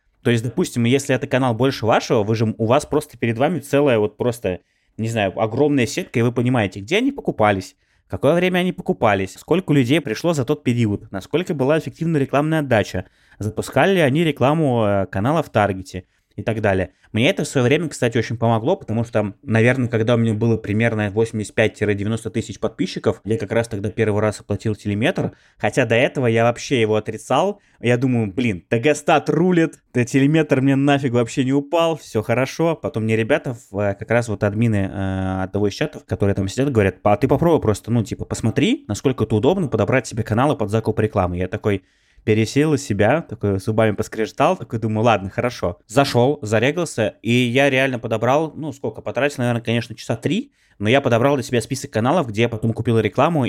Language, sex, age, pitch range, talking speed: Russian, male, 20-39, 105-140 Hz, 185 wpm